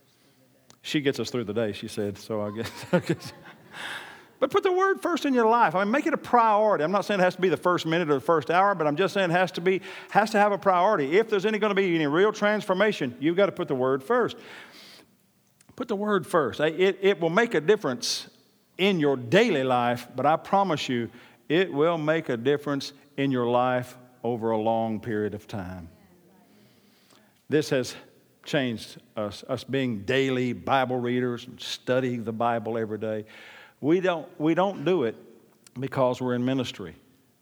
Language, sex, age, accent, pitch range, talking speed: English, male, 50-69, American, 115-170 Hz, 200 wpm